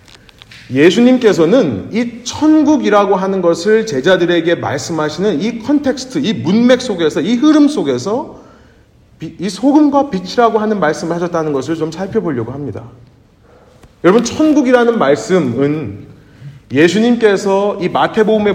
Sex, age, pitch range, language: male, 40-59, 145-235 Hz, Korean